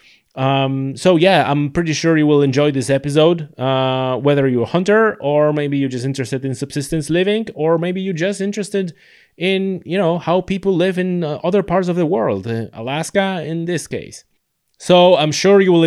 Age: 30-49